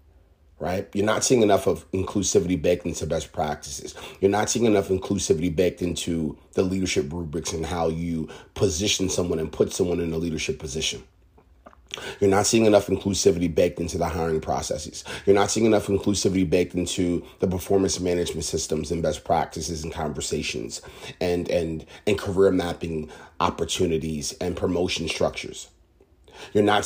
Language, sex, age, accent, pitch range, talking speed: English, male, 30-49, American, 80-100 Hz, 155 wpm